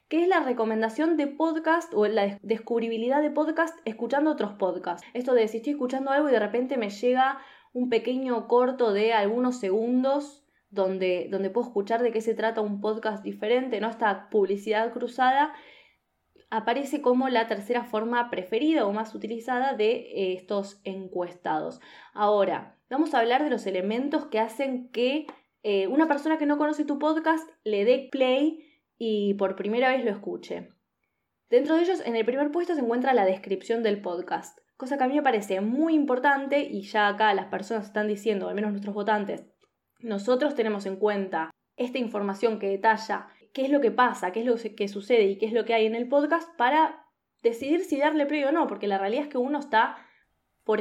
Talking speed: 190 wpm